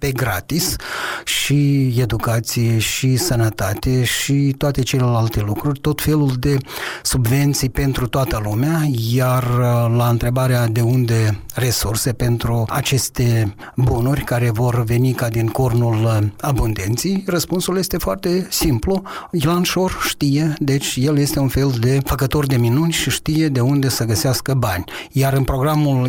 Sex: male